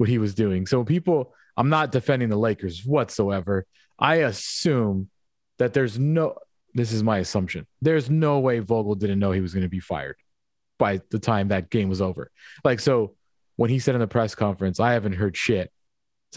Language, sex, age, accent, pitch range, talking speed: English, male, 30-49, American, 105-145 Hz, 200 wpm